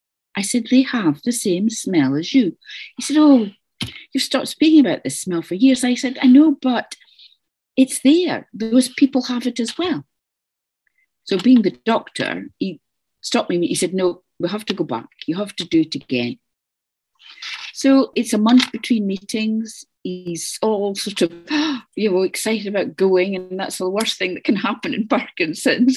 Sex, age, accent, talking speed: female, 50-69, British, 185 wpm